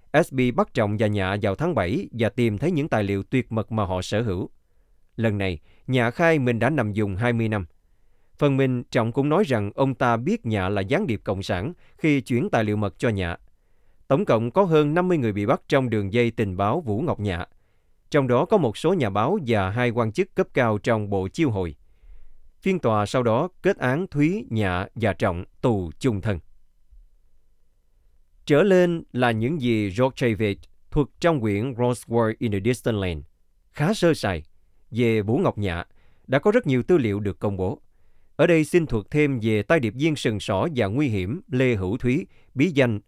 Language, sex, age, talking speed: Vietnamese, male, 20-39, 205 wpm